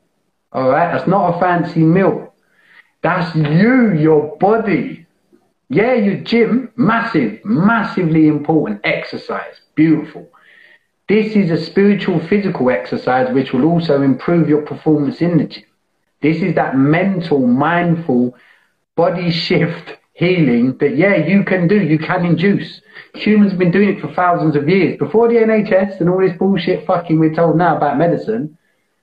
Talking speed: 150 wpm